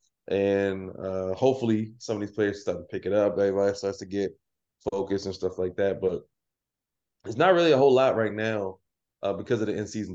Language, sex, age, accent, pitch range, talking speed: English, male, 20-39, American, 95-105 Hz, 205 wpm